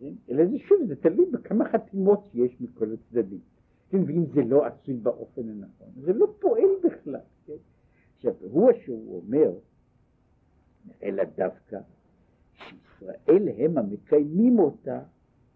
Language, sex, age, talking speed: Hebrew, male, 60-79, 125 wpm